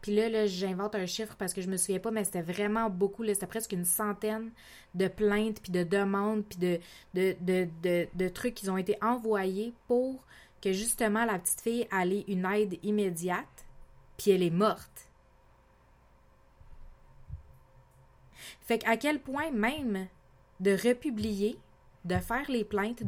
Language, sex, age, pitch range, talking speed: French, female, 20-39, 185-220 Hz, 165 wpm